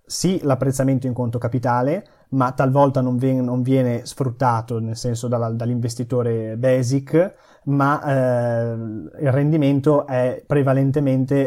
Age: 20-39